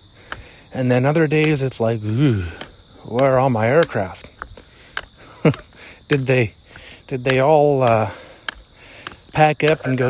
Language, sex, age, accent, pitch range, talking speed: English, male, 30-49, American, 100-150 Hz, 130 wpm